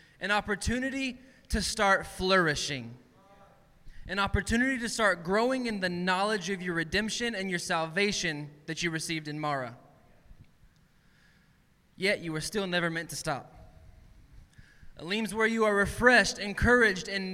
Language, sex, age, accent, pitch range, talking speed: English, male, 20-39, American, 150-205 Hz, 135 wpm